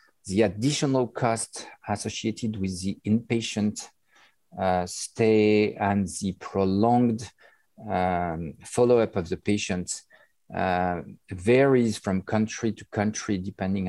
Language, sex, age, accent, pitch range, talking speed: English, male, 50-69, French, 95-115 Hz, 100 wpm